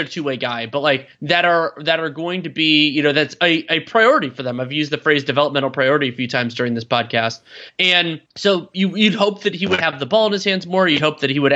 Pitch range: 150-195 Hz